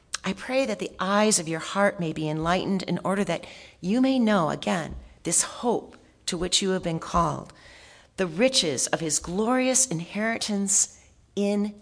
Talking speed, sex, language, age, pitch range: 170 wpm, female, English, 40-59, 155-200 Hz